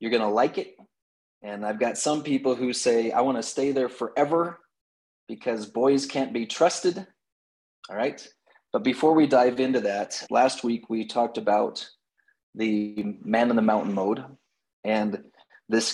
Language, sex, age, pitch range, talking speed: English, male, 30-49, 105-125 Hz, 160 wpm